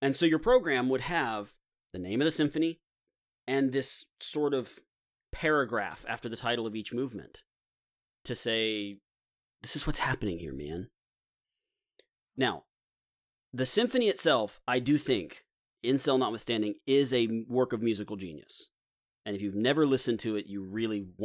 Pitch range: 100-130 Hz